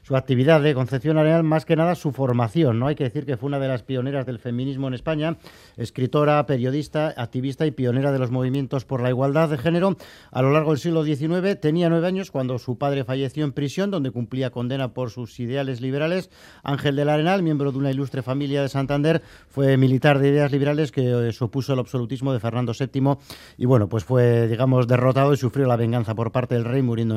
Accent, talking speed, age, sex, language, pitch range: Spanish, 210 wpm, 40-59, male, Spanish, 125-150 Hz